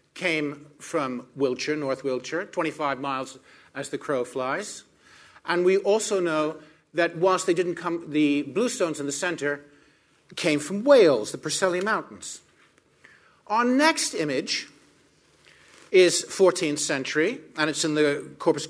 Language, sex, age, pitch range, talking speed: English, male, 50-69, 145-210 Hz, 135 wpm